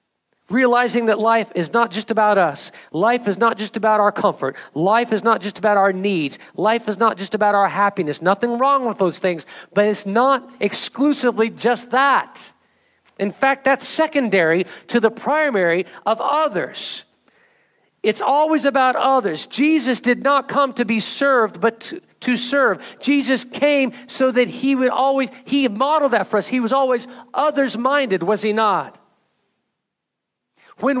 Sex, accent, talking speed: male, American, 160 wpm